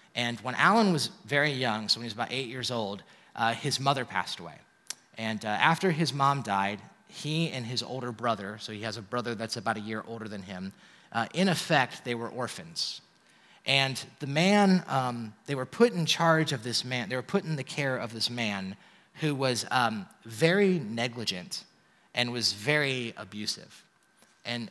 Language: English